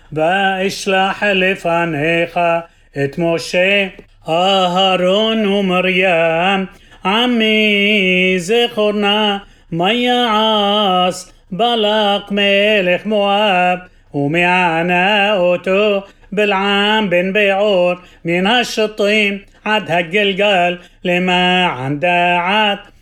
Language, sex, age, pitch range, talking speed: Hebrew, male, 30-49, 180-210 Hz, 65 wpm